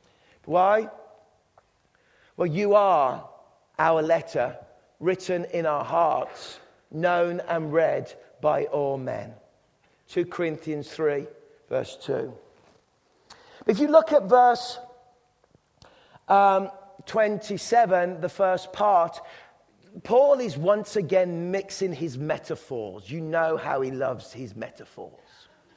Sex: male